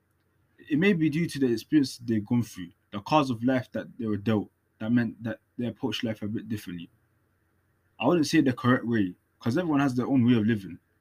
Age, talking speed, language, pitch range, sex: 20-39, 225 wpm, English, 105-135 Hz, male